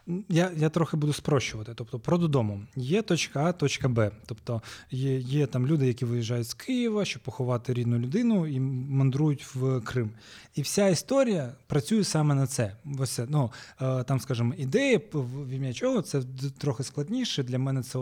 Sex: male